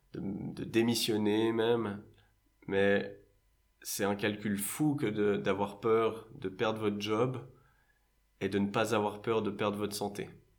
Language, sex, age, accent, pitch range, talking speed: French, male, 20-39, French, 100-115 Hz, 145 wpm